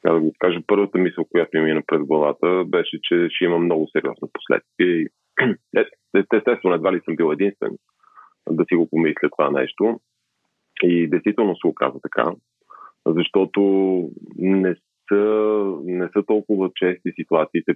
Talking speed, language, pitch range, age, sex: 150 wpm, Bulgarian, 85-105 Hz, 30-49, male